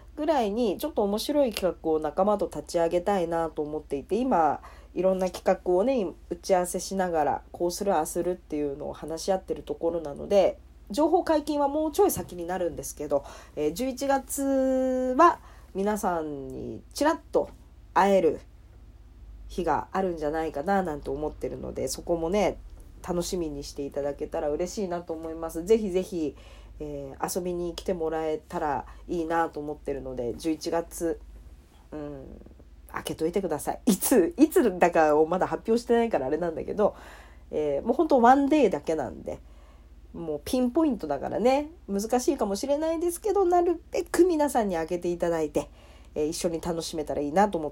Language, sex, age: Japanese, female, 40-59